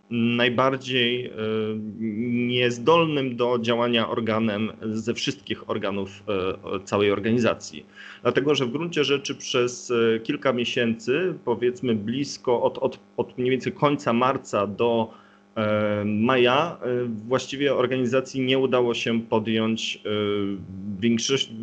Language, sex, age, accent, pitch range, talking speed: Polish, male, 30-49, native, 105-130 Hz, 100 wpm